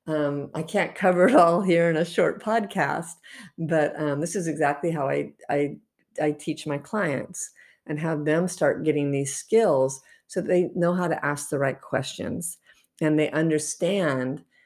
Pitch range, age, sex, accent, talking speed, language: 140-170 Hz, 50-69, female, American, 175 wpm, English